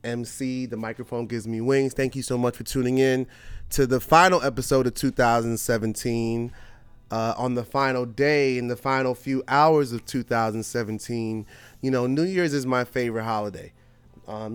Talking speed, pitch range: 165 wpm, 110-130 Hz